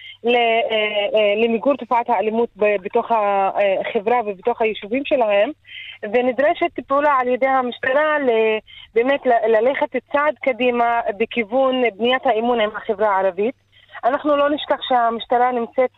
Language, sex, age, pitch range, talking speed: Hebrew, female, 20-39, 225-270 Hz, 115 wpm